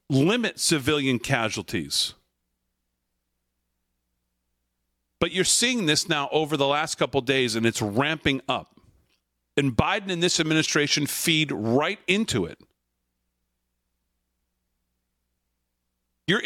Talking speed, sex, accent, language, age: 100 wpm, male, American, English, 40-59